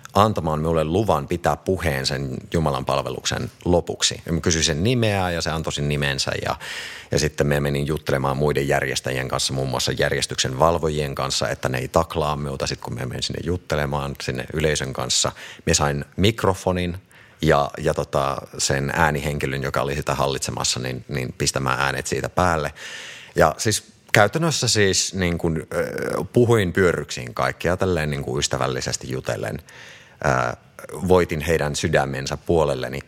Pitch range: 70-90 Hz